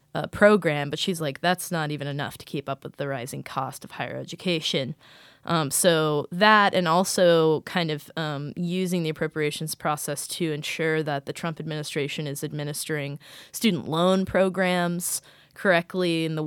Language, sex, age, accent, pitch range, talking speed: English, female, 20-39, American, 155-185 Hz, 165 wpm